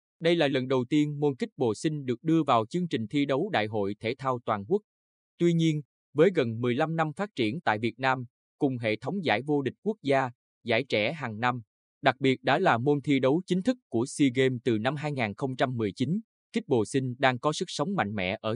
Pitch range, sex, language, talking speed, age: 115-150 Hz, male, Vietnamese, 225 wpm, 20-39